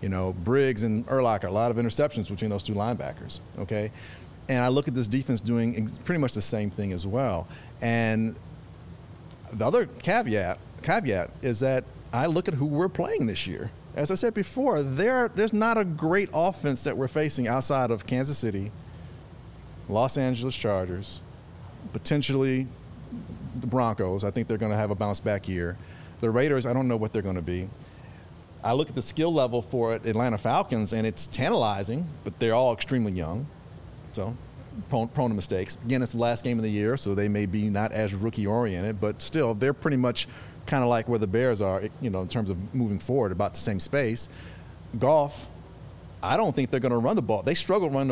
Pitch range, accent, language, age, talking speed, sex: 105-135 Hz, American, English, 40-59, 200 wpm, male